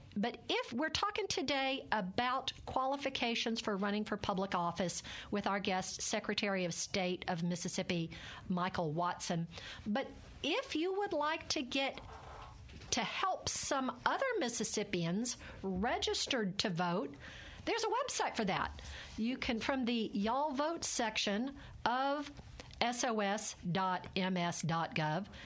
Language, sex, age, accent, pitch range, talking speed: English, female, 50-69, American, 190-255 Hz, 120 wpm